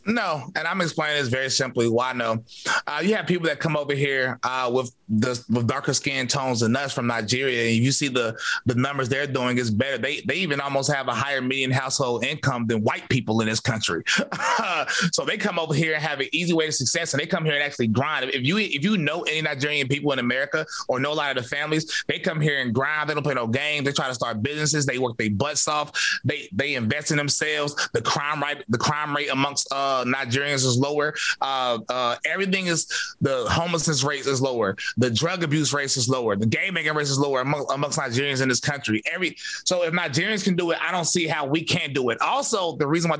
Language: English